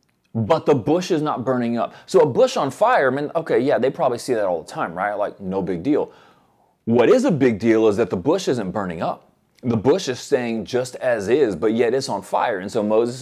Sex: male